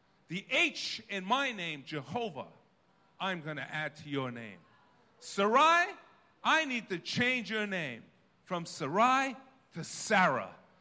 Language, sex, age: English, male, 50-69